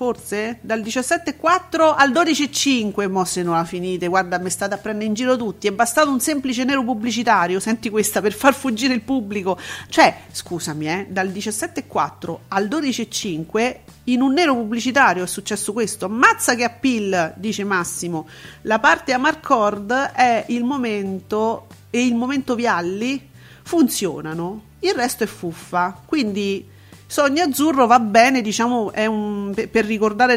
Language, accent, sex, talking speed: Italian, native, female, 150 wpm